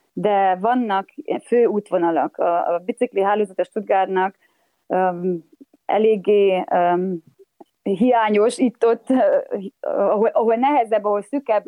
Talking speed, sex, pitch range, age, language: 70 wpm, female, 185-230 Hz, 20-39, Hungarian